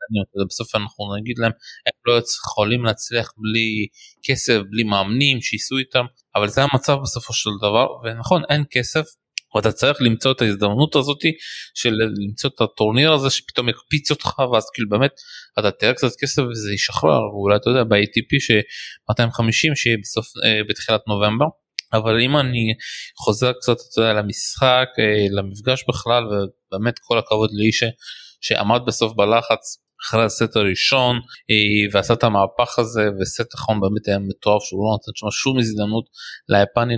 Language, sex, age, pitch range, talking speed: Hebrew, male, 20-39, 105-130 Hz, 140 wpm